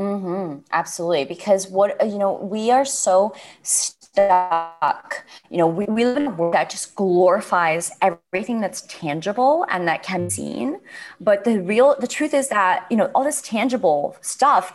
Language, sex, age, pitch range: English, female, 20-39, 175-250 Hz